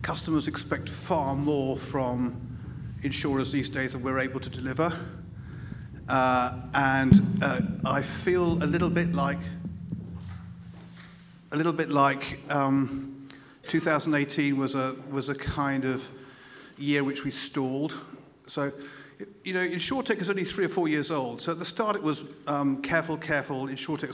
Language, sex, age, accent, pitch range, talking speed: English, male, 50-69, British, 130-150 Hz, 145 wpm